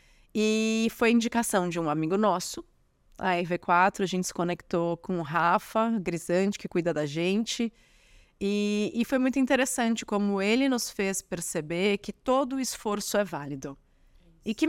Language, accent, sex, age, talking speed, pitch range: Portuguese, Brazilian, female, 20-39, 155 wpm, 185-235 Hz